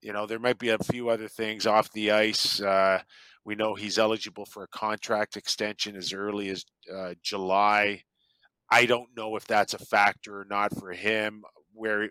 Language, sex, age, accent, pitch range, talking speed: English, male, 40-59, American, 105-115 Hz, 190 wpm